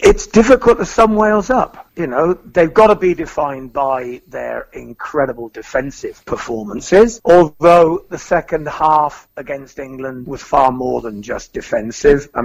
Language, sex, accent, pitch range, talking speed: English, male, British, 140-195 Hz, 150 wpm